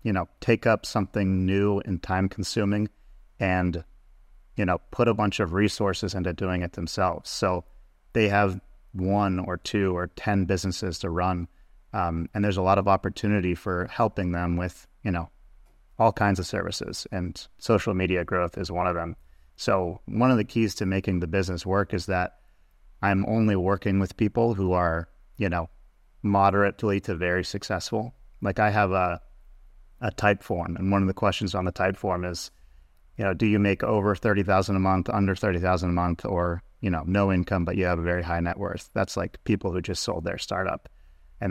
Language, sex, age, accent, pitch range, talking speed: English, male, 30-49, American, 90-100 Hz, 195 wpm